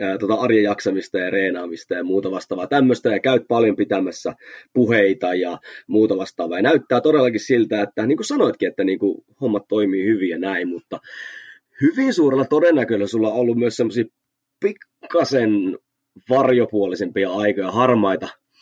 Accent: native